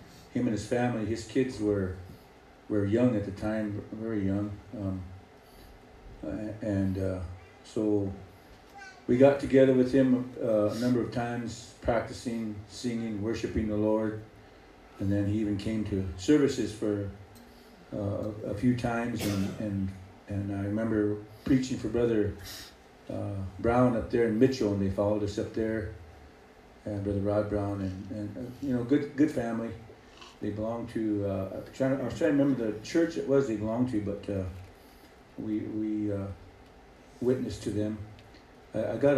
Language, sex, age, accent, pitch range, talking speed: English, male, 50-69, American, 100-115 Hz, 160 wpm